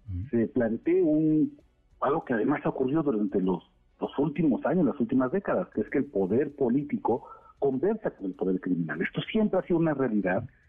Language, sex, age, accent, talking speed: Spanish, male, 50-69, Mexican, 185 wpm